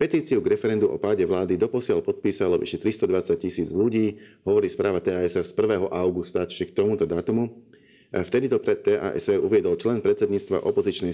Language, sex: Slovak, male